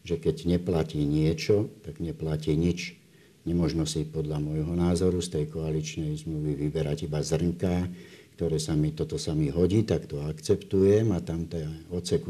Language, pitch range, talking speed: Slovak, 75-90 Hz, 155 wpm